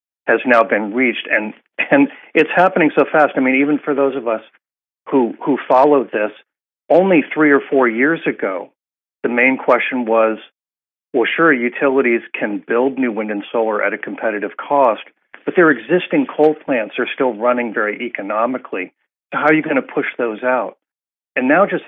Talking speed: 180 wpm